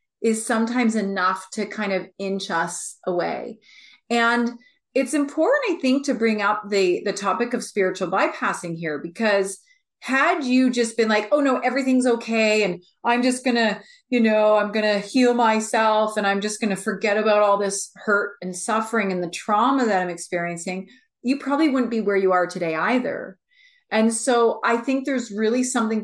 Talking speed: 175 wpm